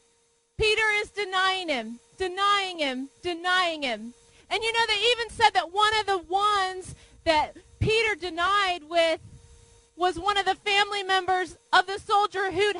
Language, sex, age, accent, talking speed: English, female, 30-49, American, 155 wpm